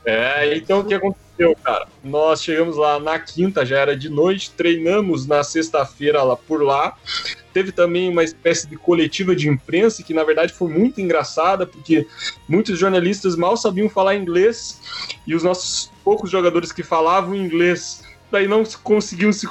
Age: 20-39